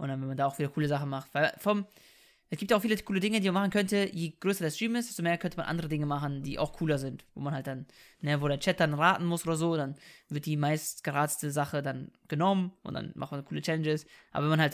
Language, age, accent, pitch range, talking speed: German, 20-39, German, 145-185 Hz, 290 wpm